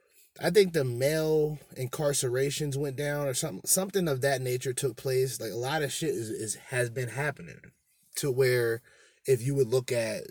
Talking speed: 190 wpm